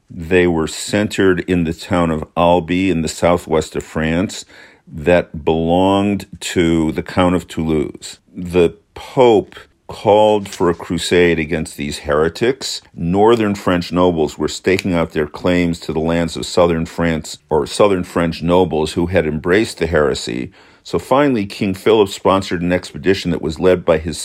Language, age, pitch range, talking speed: English, 50-69, 85-95 Hz, 160 wpm